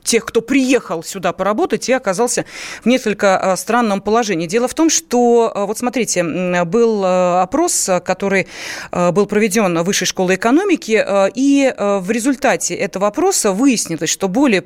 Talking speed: 140 wpm